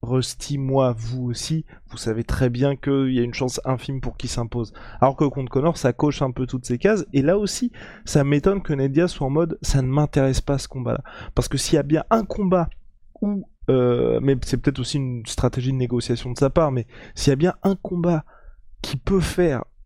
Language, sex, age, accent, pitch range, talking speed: French, male, 20-39, French, 130-165 Hz, 225 wpm